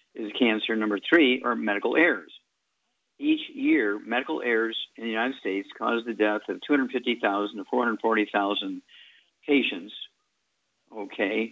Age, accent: 50-69, American